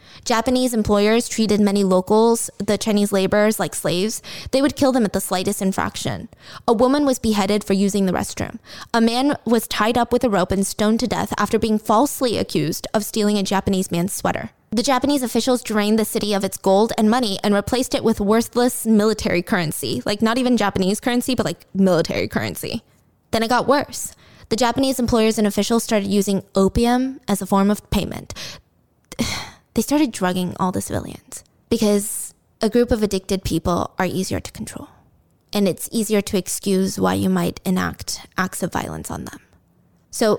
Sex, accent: female, American